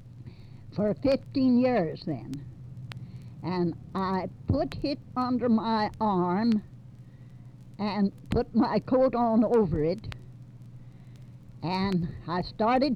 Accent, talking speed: American, 95 wpm